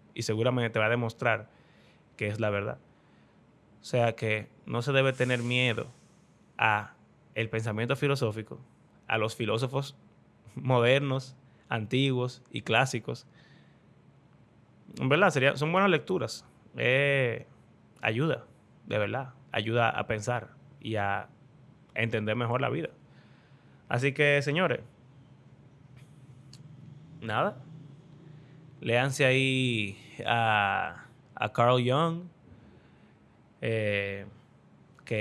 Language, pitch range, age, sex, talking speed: Spanish, 115-140 Hz, 20-39, male, 100 wpm